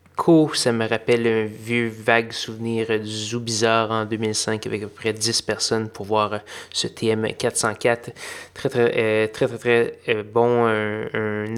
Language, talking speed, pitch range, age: French, 165 wpm, 110-130 Hz, 20-39